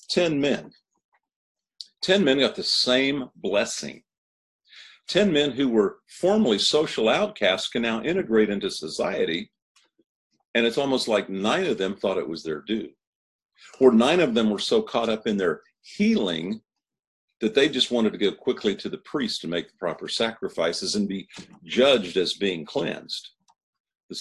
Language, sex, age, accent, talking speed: English, male, 50-69, American, 160 wpm